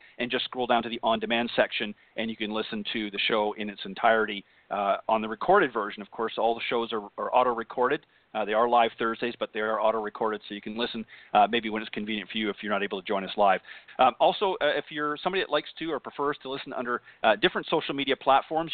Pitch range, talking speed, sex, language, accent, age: 110-140 Hz, 245 wpm, male, English, American, 40-59